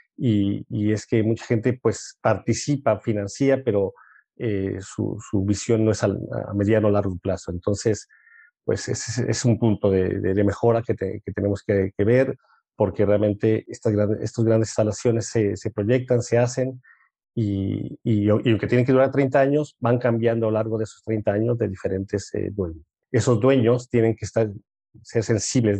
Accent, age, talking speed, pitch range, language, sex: Mexican, 40-59, 180 wpm, 105-125 Hz, Spanish, male